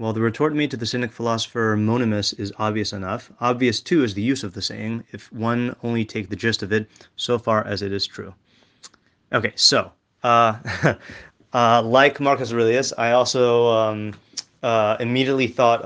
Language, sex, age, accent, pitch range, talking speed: English, male, 30-49, American, 110-125 Hz, 180 wpm